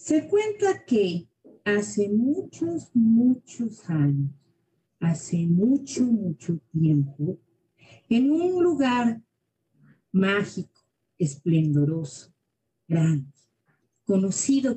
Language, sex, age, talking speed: Spanish, female, 50-69, 75 wpm